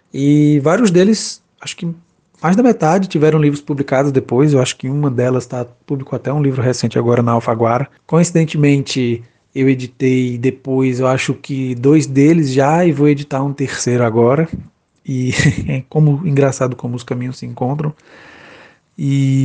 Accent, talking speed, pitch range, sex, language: Brazilian, 160 wpm, 130-155 Hz, male, Portuguese